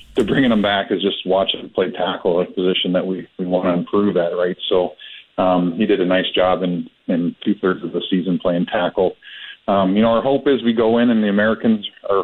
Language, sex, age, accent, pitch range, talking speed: English, male, 40-59, American, 90-110 Hz, 235 wpm